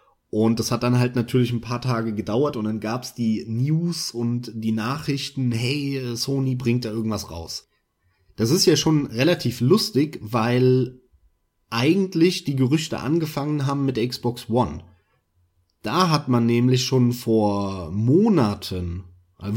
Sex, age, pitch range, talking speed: male, 30-49, 110-140 Hz, 145 wpm